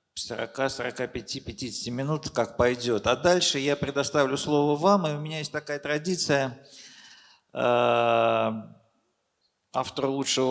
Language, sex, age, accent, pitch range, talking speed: Russian, male, 50-69, native, 110-145 Hz, 95 wpm